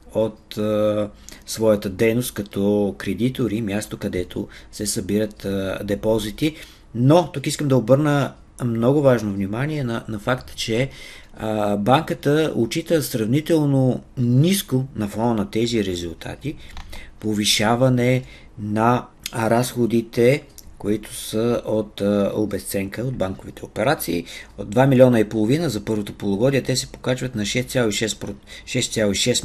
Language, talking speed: Bulgarian, 115 wpm